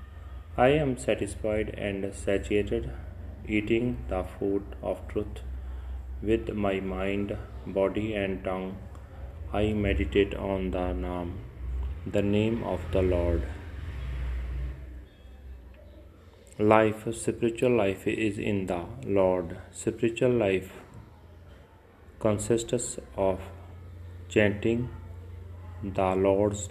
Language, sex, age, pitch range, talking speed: Punjabi, male, 30-49, 90-105 Hz, 90 wpm